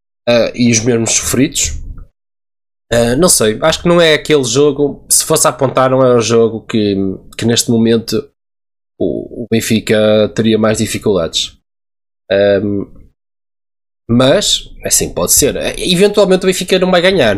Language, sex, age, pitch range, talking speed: Portuguese, male, 20-39, 110-145 Hz, 150 wpm